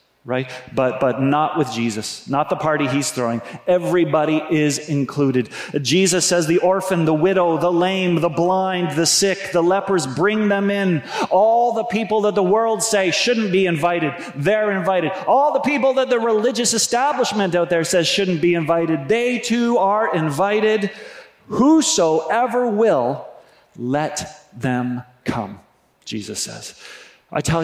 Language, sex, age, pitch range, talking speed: English, male, 40-59, 135-190 Hz, 150 wpm